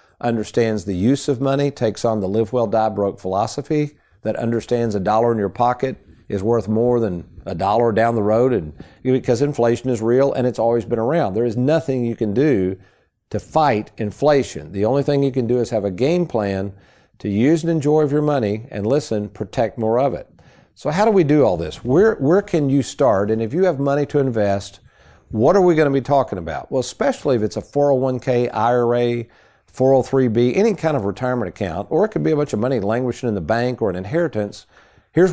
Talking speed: 215 wpm